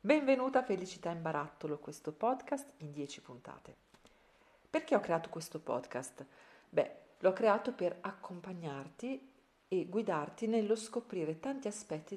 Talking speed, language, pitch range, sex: 130 wpm, Italian, 150-205 Hz, female